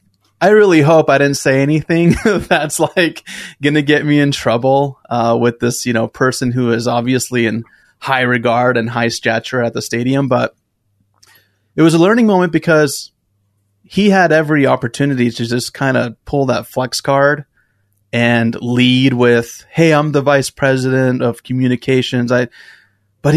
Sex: male